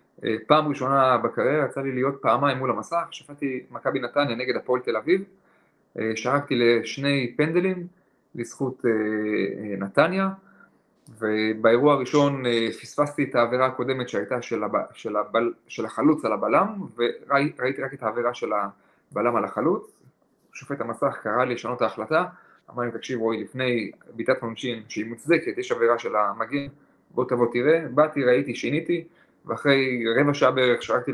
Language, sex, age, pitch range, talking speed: Hebrew, male, 30-49, 120-150 Hz, 145 wpm